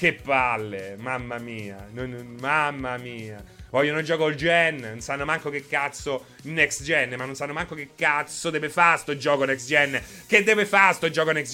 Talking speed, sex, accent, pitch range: 185 wpm, male, native, 140-210 Hz